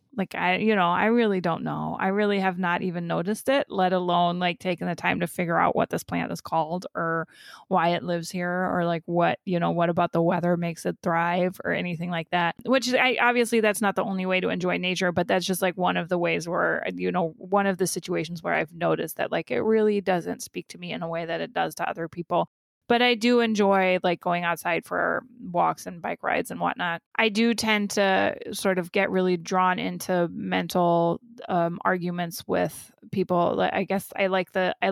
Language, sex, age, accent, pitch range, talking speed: English, female, 20-39, American, 170-195 Hz, 225 wpm